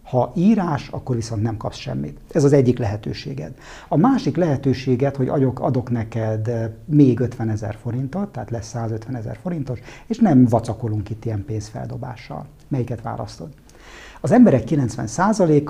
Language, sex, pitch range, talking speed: Hungarian, male, 110-135 Hz, 140 wpm